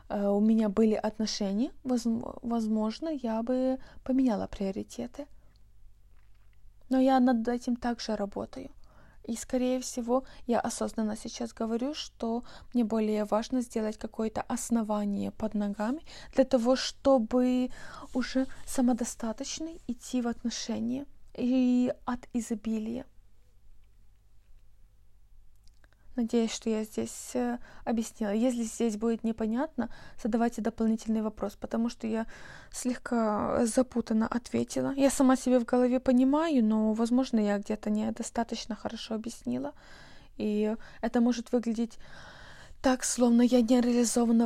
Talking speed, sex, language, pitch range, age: 110 wpm, female, Russian, 215-250 Hz, 20-39